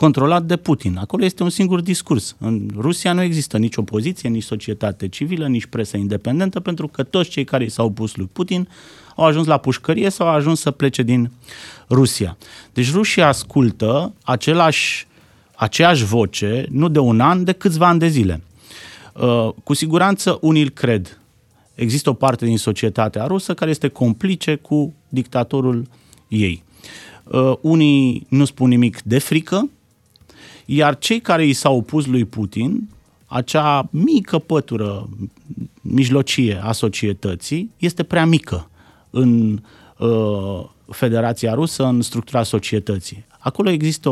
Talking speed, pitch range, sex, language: 140 wpm, 110-155 Hz, male, Romanian